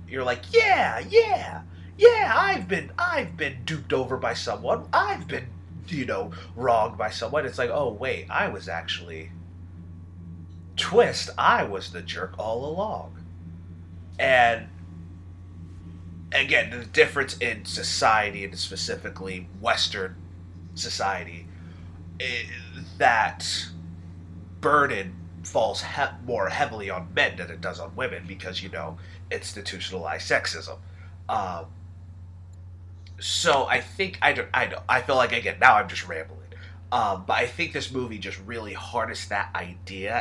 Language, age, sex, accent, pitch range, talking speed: English, 30-49, male, American, 90-95 Hz, 135 wpm